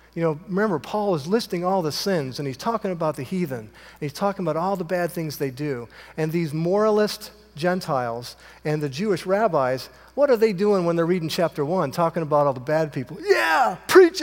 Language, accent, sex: English, American, male